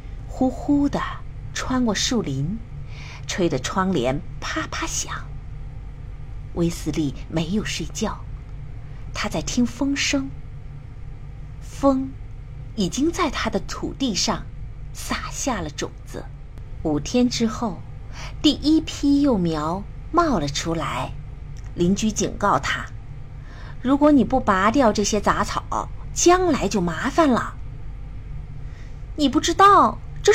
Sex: female